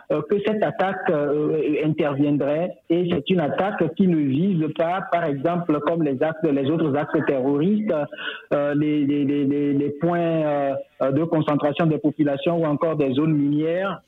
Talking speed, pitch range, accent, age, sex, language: 160 wpm, 145-180 Hz, French, 50-69, male, French